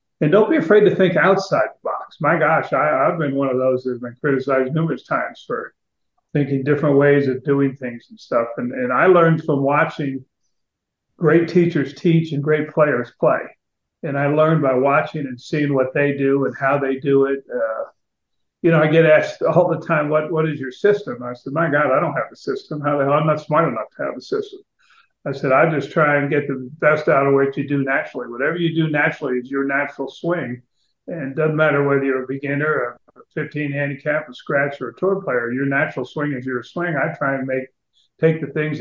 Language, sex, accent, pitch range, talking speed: English, male, American, 135-160 Hz, 225 wpm